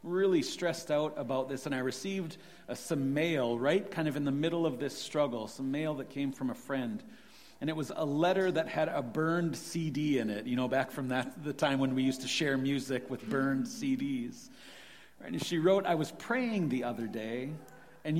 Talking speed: 215 wpm